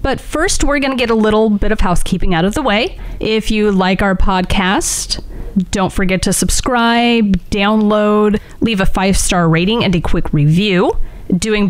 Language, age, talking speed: English, 30-49, 175 wpm